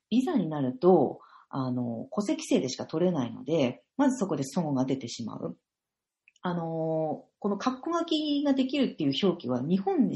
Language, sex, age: Japanese, female, 40-59